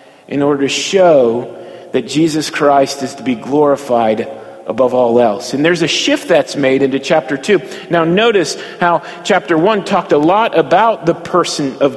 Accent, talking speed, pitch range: American, 175 wpm, 155-190 Hz